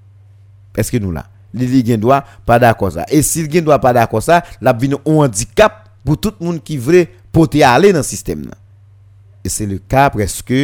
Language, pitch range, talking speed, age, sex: French, 105-155 Hz, 260 wpm, 50-69, male